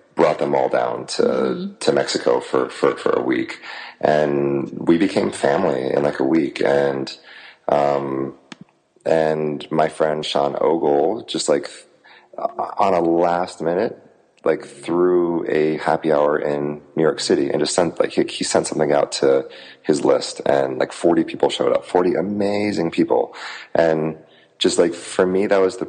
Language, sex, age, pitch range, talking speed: English, male, 30-49, 70-110 Hz, 165 wpm